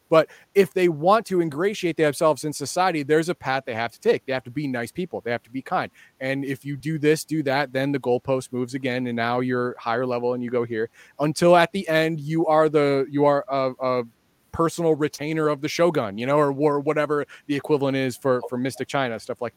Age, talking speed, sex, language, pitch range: 30-49, 240 wpm, male, English, 130-165 Hz